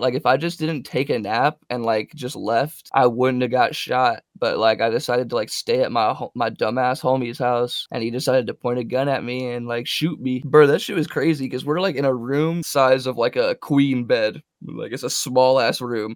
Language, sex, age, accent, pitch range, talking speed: English, male, 20-39, American, 125-155 Hz, 245 wpm